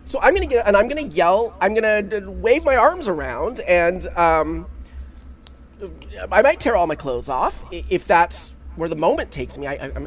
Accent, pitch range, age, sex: American, 150-215 Hz, 30-49, male